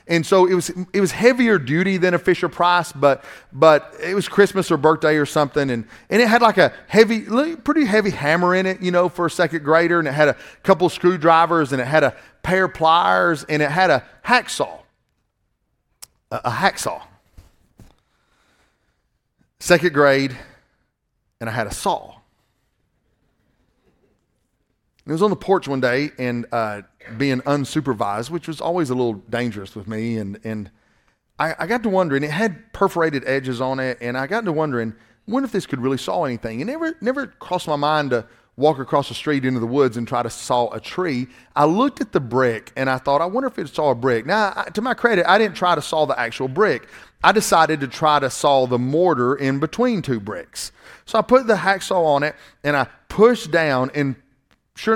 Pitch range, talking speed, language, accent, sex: 130-185 Hz, 200 wpm, English, American, male